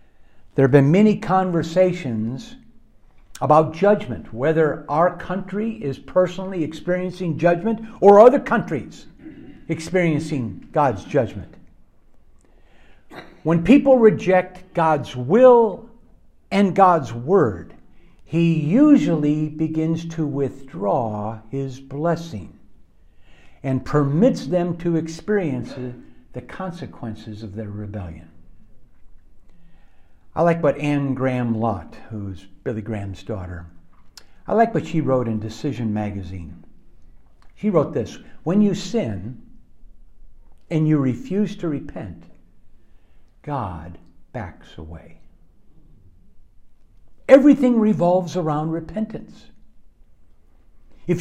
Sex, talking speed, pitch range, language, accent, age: male, 95 wpm, 110-180 Hz, English, American, 60-79